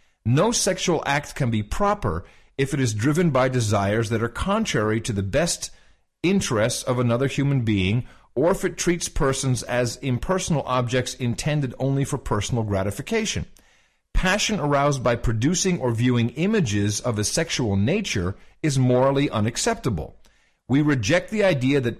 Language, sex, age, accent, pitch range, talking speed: English, male, 50-69, American, 115-165 Hz, 150 wpm